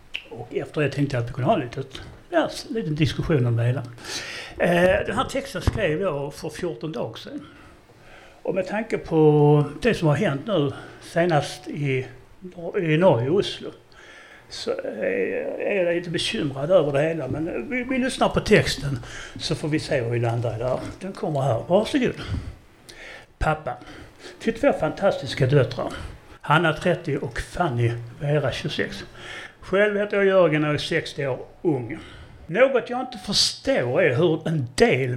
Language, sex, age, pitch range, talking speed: Swedish, male, 60-79, 140-200 Hz, 165 wpm